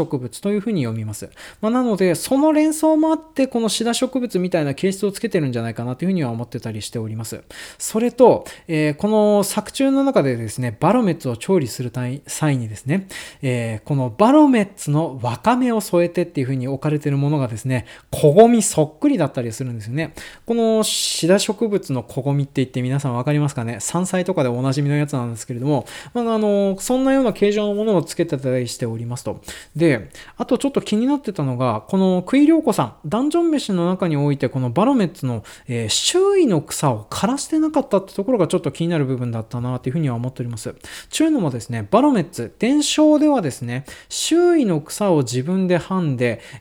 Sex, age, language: male, 20-39, Japanese